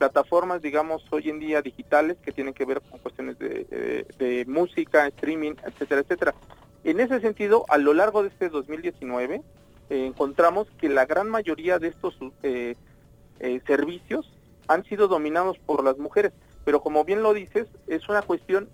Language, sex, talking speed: English, male, 165 wpm